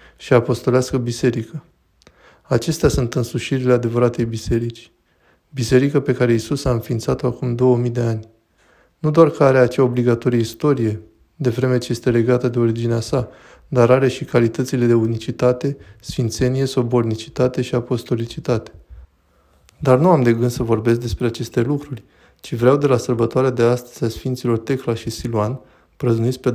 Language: Romanian